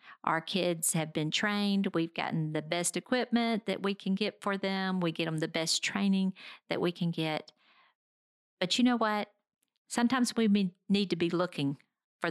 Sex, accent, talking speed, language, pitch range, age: female, American, 180 wpm, English, 165-205 Hz, 50-69